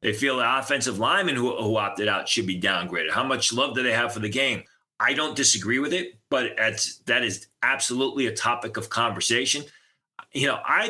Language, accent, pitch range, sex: English, American, 110-145 Hz, male